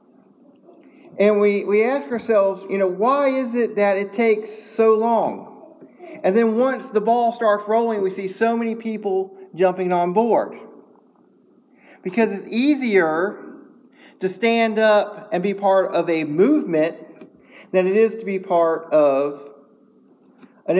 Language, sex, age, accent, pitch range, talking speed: English, male, 40-59, American, 190-240 Hz, 145 wpm